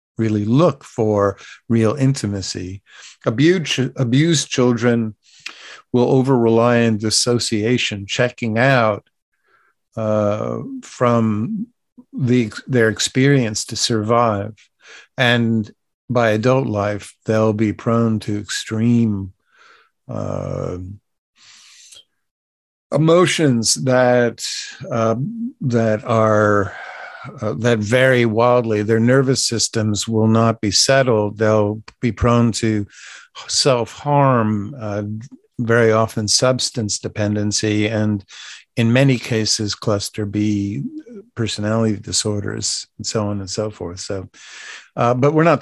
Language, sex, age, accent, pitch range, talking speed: English, male, 50-69, American, 105-125 Hz, 100 wpm